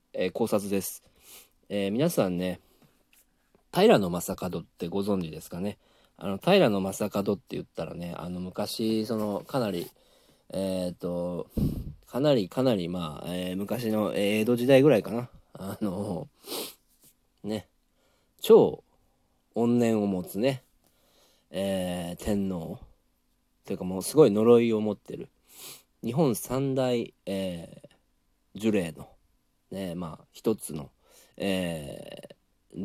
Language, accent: Japanese, native